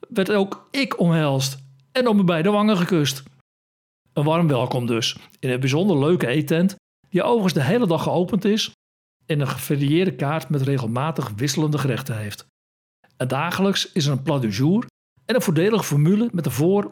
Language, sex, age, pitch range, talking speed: Dutch, male, 60-79, 130-185 Hz, 175 wpm